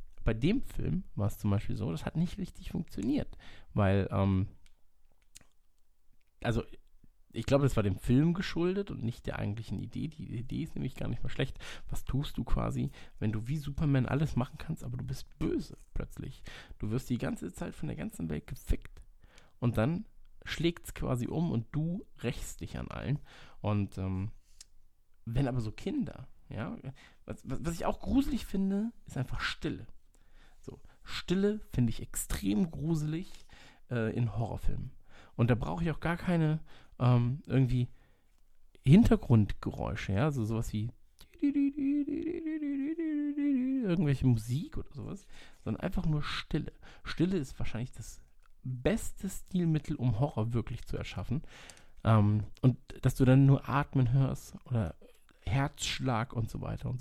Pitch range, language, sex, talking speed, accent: 110-160 Hz, German, male, 155 wpm, German